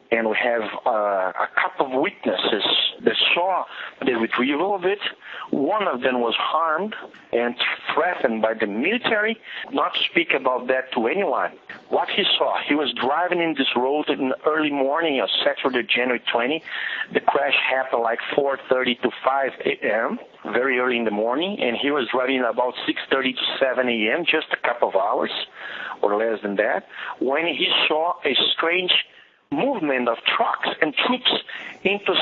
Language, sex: English, male